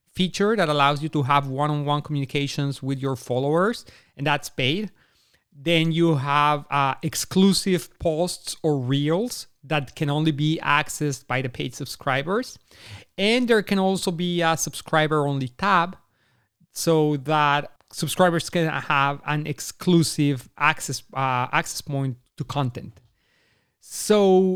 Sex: male